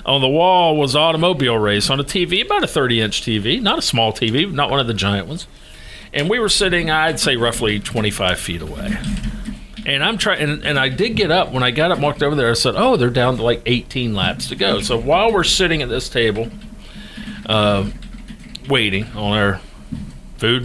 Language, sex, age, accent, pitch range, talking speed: English, male, 50-69, American, 105-155 Hz, 215 wpm